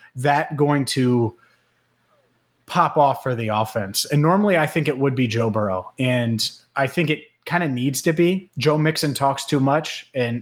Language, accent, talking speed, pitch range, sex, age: English, American, 185 wpm, 125-155 Hz, male, 30-49